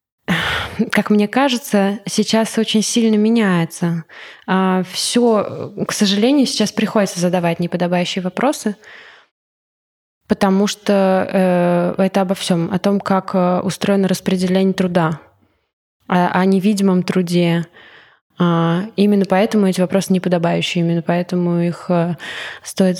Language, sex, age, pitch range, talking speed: Russian, female, 20-39, 180-210 Hz, 100 wpm